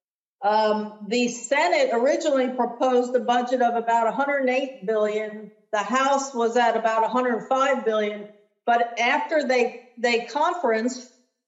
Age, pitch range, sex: 50-69, 225-265 Hz, female